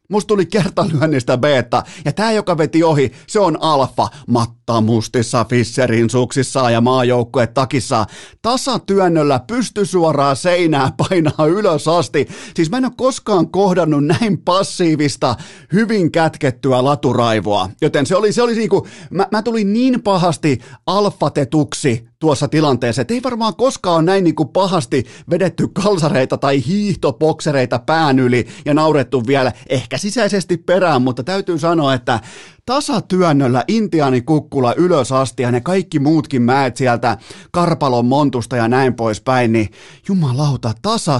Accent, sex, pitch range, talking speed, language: native, male, 130-180 Hz, 135 wpm, Finnish